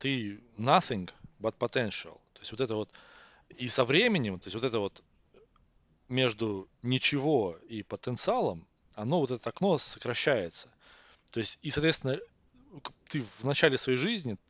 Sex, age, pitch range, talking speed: male, 20-39, 95-135 Hz, 145 wpm